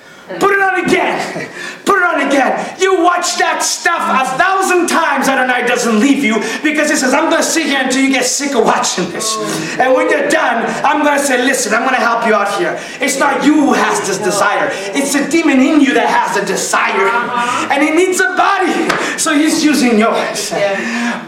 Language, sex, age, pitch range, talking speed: English, male, 30-49, 240-320 Hz, 215 wpm